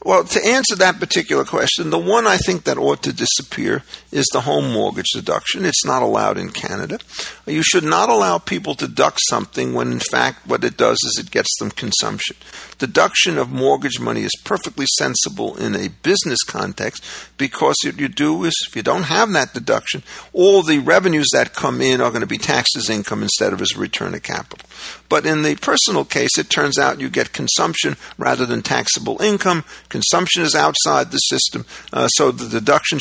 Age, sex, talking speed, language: 50-69, male, 195 wpm, English